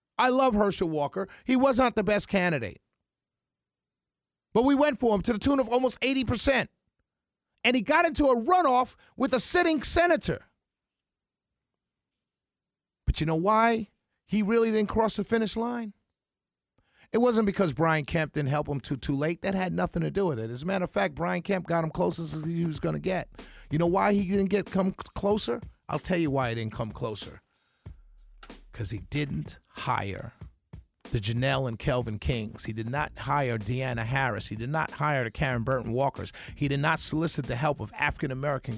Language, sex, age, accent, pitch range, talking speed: English, male, 40-59, American, 140-200 Hz, 190 wpm